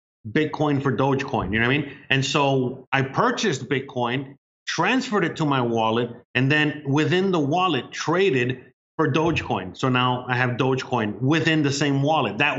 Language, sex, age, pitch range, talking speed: English, male, 30-49, 125-150 Hz, 170 wpm